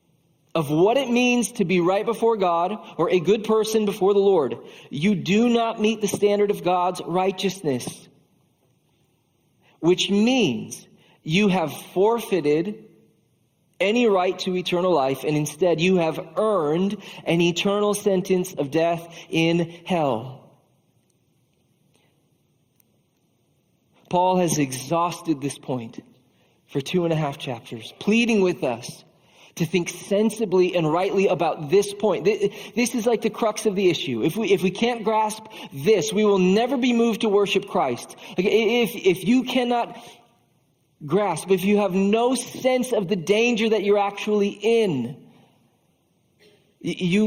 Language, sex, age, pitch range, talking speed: English, male, 40-59, 165-215 Hz, 140 wpm